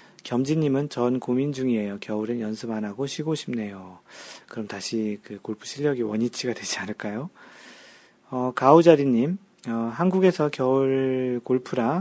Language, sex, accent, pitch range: Korean, male, native, 120-155 Hz